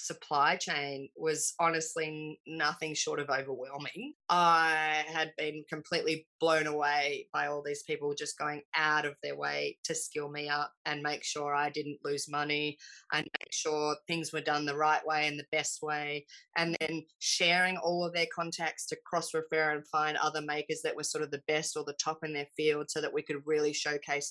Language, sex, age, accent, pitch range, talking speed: English, female, 20-39, Australian, 150-165 Hz, 195 wpm